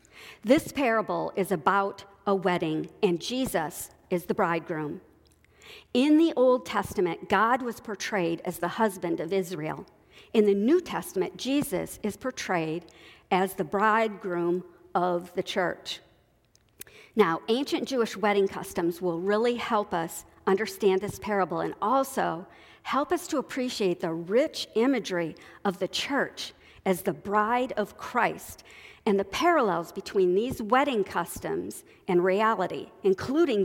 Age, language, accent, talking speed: 50-69, English, American, 135 wpm